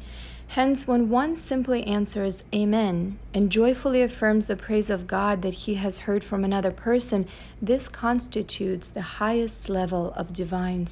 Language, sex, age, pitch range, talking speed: English, female, 40-59, 185-230 Hz, 150 wpm